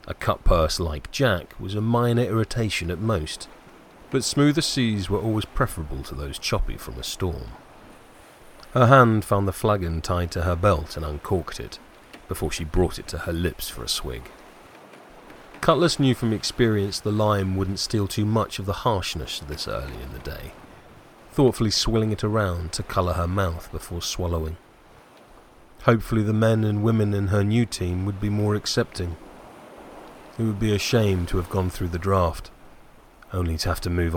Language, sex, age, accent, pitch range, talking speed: English, male, 30-49, British, 85-110 Hz, 180 wpm